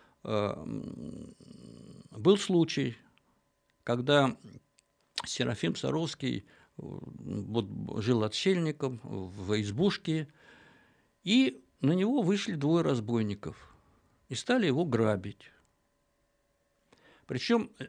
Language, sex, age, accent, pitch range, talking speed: Russian, male, 60-79, native, 115-165 Hz, 65 wpm